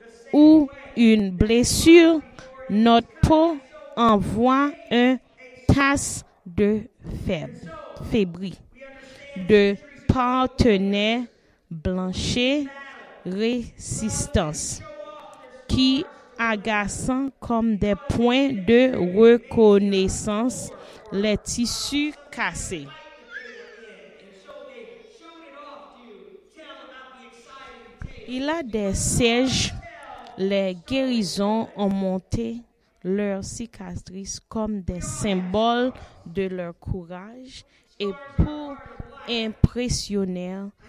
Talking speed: 65 wpm